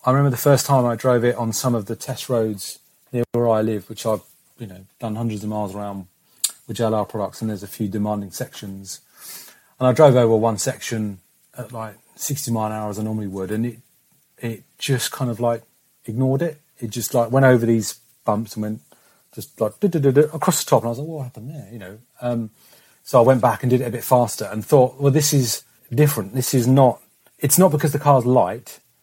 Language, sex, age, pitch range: English, male, 30-49, 110-130 Hz